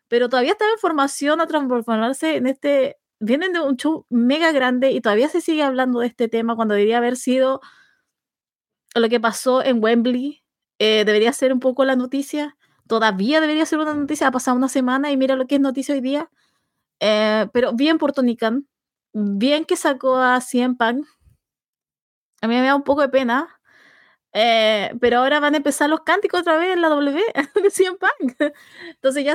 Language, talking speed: Spanish, 185 wpm